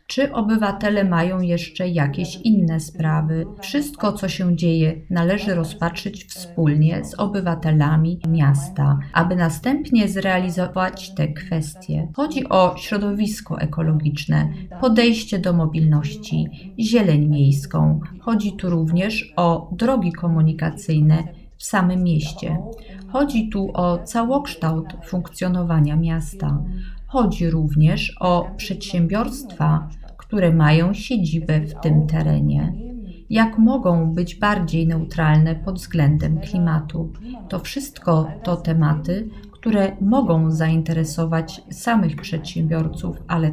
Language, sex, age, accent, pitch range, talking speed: Polish, female, 30-49, native, 160-205 Hz, 100 wpm